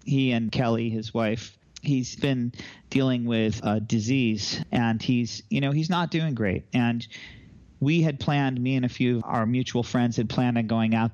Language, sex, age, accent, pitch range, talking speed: English, male, 40-59, American, 115-130 Hz, 195 wpm